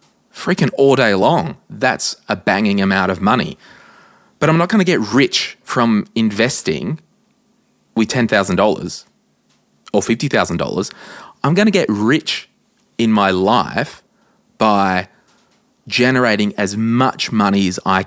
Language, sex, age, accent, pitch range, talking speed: English, male, 20-39, Australian, 100-155 Hz, 125 wpm